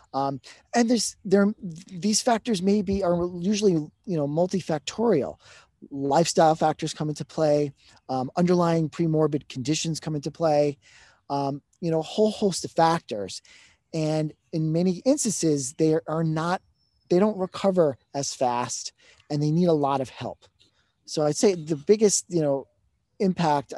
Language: English